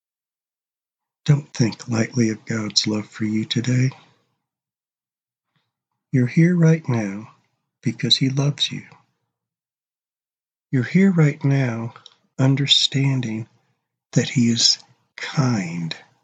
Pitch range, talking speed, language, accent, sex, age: 115-145 Hz, 95 wpm, English, American, male, 60-79